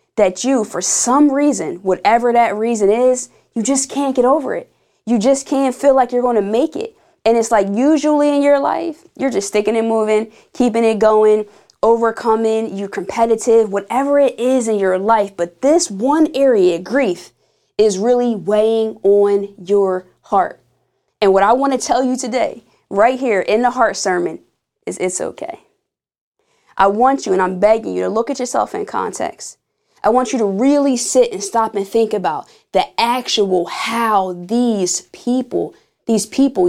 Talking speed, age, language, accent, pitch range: 175 wpm, 20-39, English, American, 210-255 Hz